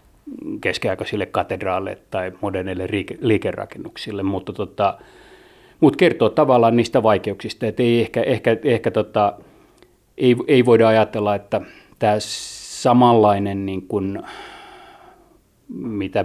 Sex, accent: male, native